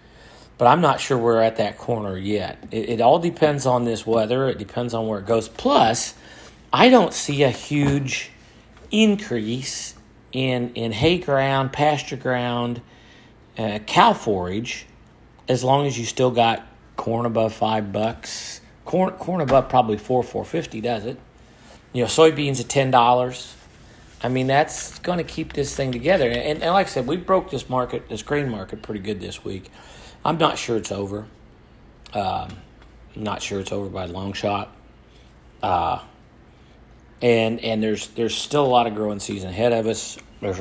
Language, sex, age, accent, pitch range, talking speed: English, male, 40-59, American, 110-140 Hz, 175 wpm